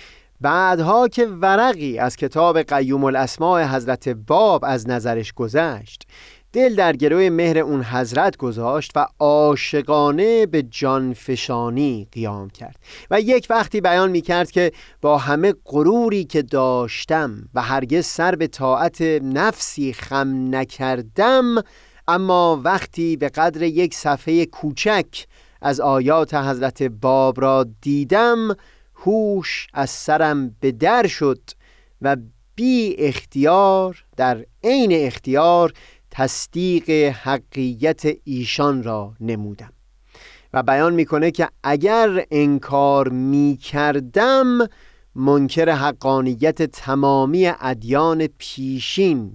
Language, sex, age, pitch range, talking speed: Persian, male, 30-49, 130-170 Hz, 105 wpm